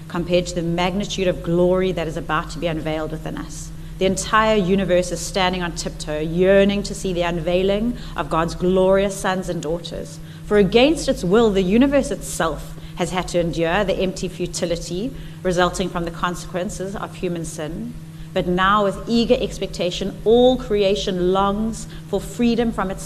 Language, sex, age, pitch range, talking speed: English, female, 30-49, 160-195 Hz, 170 wpm